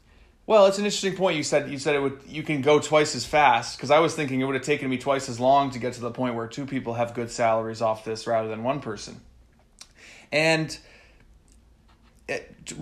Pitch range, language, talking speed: 115-145 Hz, English, 225 wpm